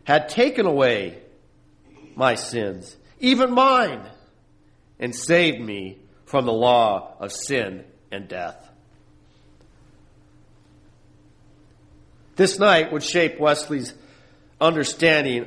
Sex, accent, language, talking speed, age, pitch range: male, American, English, 90 wpm, 50-69, 115-170 Hz